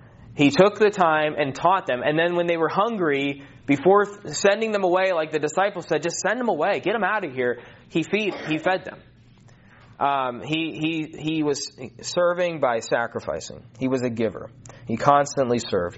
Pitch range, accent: 125-160 Hz, American